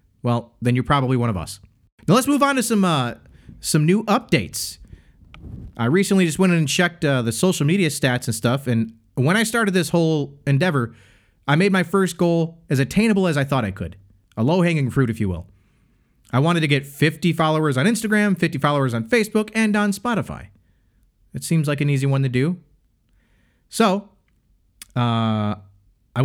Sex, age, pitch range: male, 30-49, 110-170 Hz